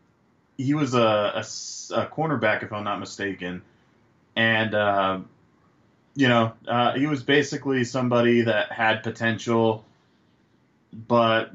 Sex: male